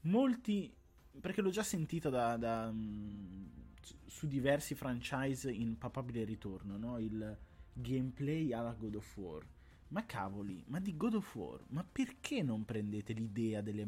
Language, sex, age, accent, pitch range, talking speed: Italian, male, 20-39, native, 95-135 Hz, 130 wpm